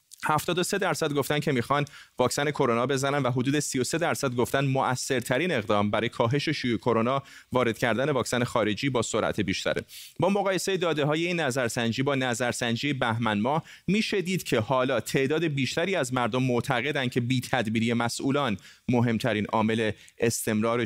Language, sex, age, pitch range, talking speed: Persian, male, 30-49, 115-145 Hz, 145 wpm